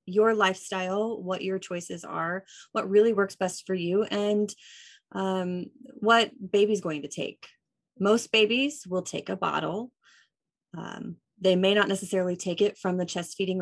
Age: 30-49